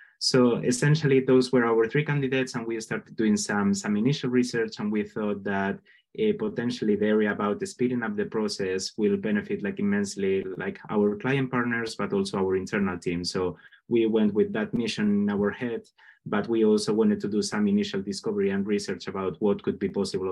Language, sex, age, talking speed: English, male, 20-39, 200 wpm